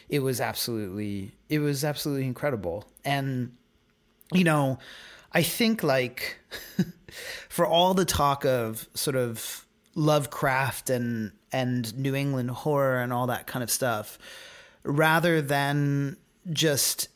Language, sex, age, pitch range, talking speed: English, male, 30-49, 115-145 Hz, 120 wpm